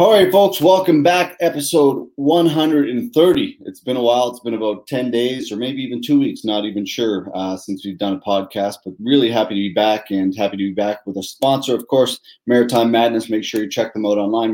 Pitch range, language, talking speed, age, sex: 105-135 Hz, English, 225 wpm, 30-49, male